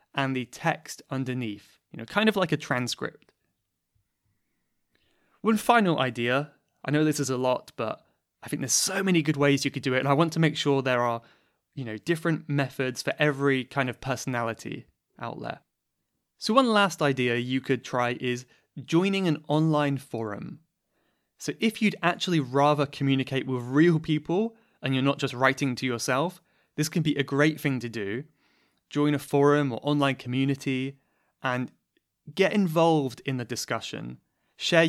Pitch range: 130-165 Hz